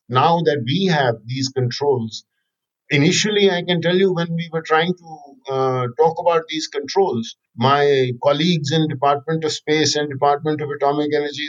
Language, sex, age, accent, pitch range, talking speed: English, male, 50-69, Indian, 145-185 Hz, 165 wpm